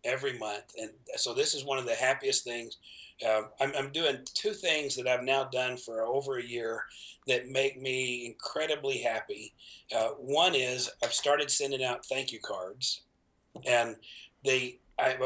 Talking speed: 170 wpm